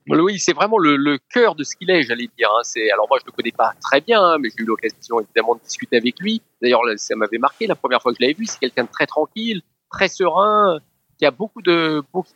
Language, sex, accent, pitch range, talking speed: French, male, French, 130-200 Hz, 260 wpm